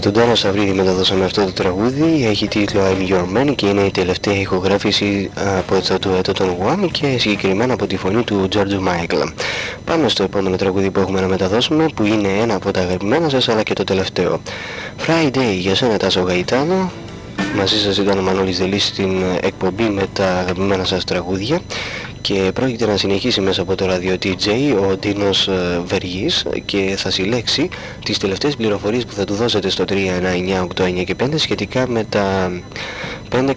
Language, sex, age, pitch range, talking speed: Greek, male, 20-39, 95-110 Hz, 180 wpm